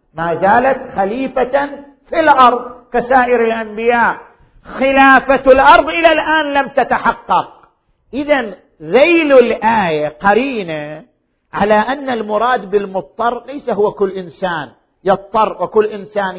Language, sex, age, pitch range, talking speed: Arabic, male, 50-69, 175-270 Hz, 105 wpm